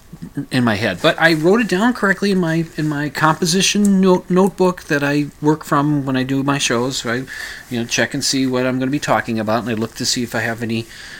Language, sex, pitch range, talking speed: English, male, 110-150 Hz, 250 wpm